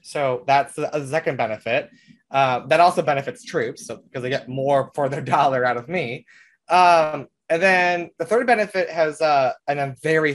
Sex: male